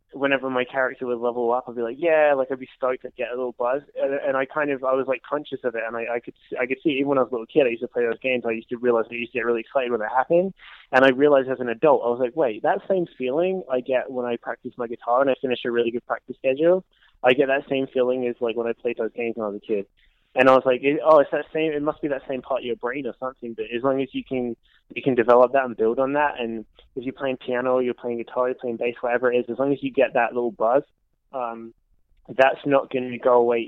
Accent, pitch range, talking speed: American, 120-140 Hz, 300 wpm